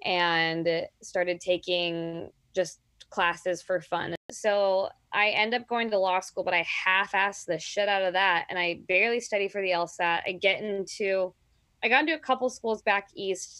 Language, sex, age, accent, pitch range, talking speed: English, female, 20-39, American, 180-205 Hz, 180 wpm